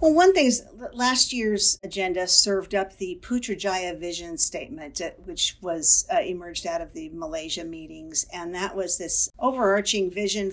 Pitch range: 175-210 Hz